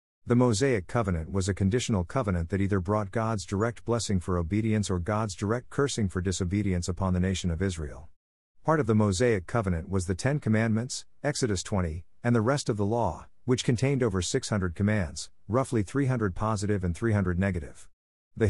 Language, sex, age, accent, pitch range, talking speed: English, male, 50-69, American, 90-115 Hz, 180 wpm